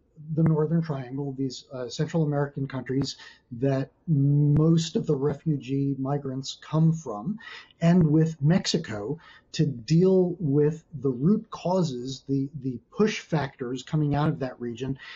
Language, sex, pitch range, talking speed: English, male, 135-160 Hz, 135 wpm